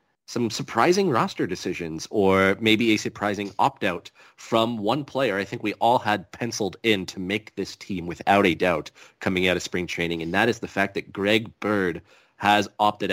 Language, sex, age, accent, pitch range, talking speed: English, male, 30-49, American, 95-115 Hz, 185 wpm